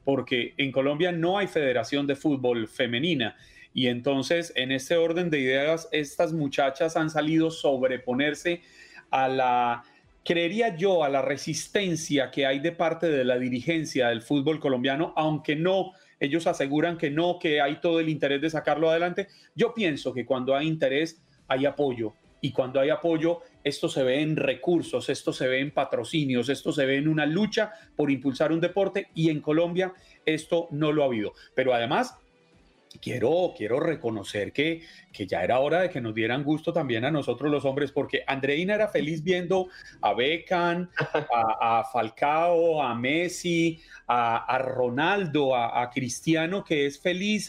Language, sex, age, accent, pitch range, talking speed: Spanish, male, 30-49, Colombian, 135-170 Hz, 165 wpm